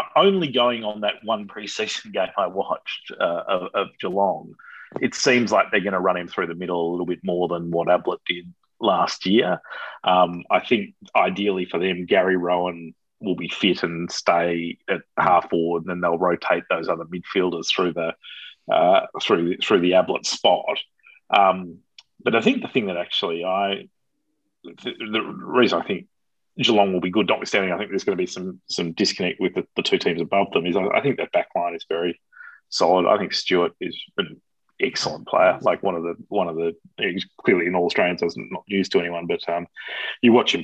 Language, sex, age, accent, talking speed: English, male, 30-49, Australian, 205 wpm